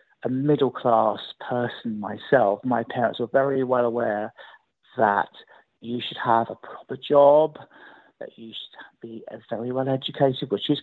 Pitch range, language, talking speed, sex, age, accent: 105-130 Hz, English, 140 wpm, male, 50-69, British